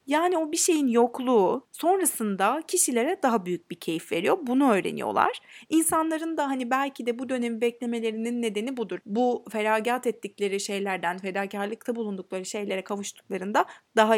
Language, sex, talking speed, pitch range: Turkish, female, 140 wpm, 210-295 Hz